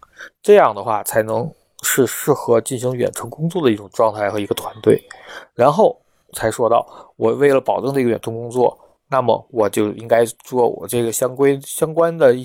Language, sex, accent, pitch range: Chinese, male, native, 120-150 Hz